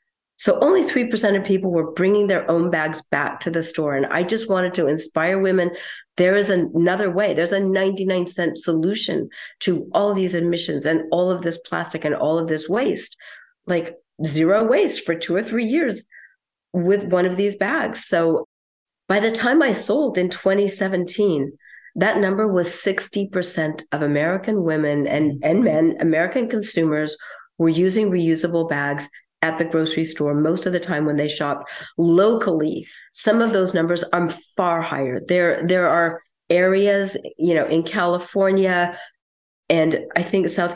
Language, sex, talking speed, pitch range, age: English, female, 165 wpm, 170-210 Hz, 50-69